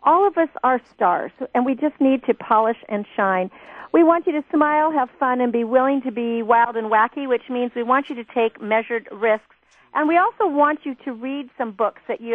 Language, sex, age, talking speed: English, female, 50-69, 235 wpm